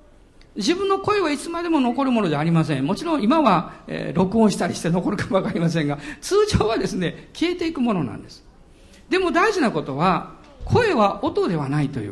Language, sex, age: Japanese, male, 50-69